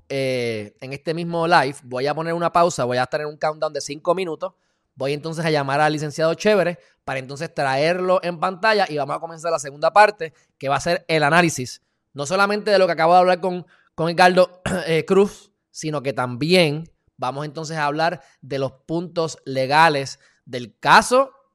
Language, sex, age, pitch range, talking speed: Spanish, male, 20-39, 140-180 Hz, 195 wpm